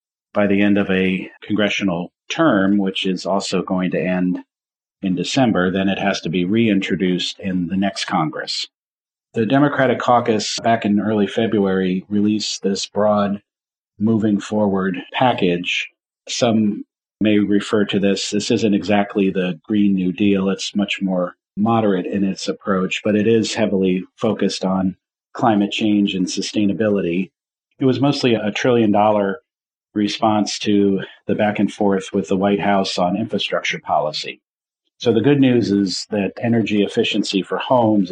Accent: American